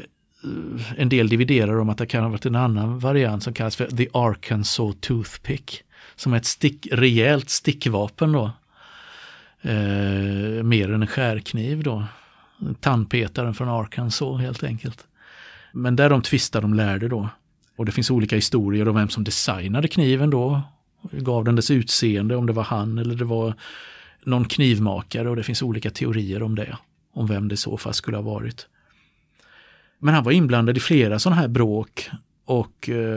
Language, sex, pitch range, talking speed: Swedish, male, 110-130 Hz, 170 wpm